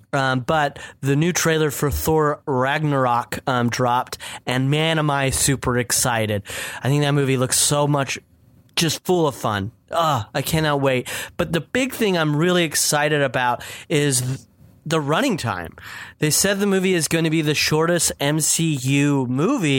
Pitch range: 130-165 Hz